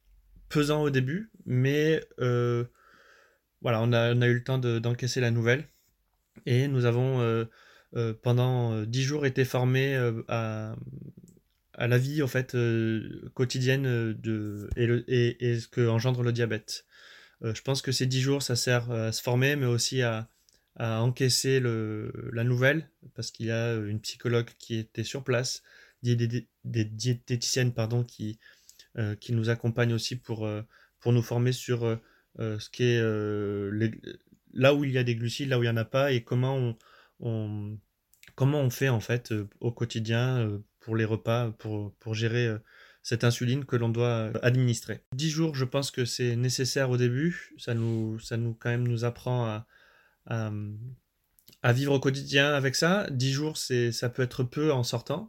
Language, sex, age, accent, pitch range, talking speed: French, male, 20-39, French, 115-130 Hz, 185 wpm